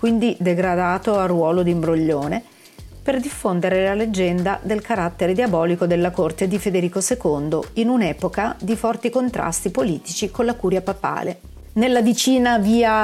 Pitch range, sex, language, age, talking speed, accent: 175-235 Hz, female, Italian, 40-59, 145 wpm, native